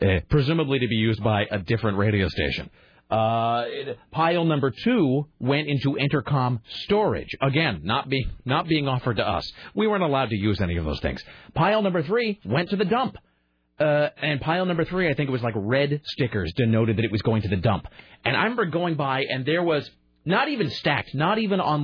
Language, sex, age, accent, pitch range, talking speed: English, male, 30-49, American, 110-160 Hz, 210 wpm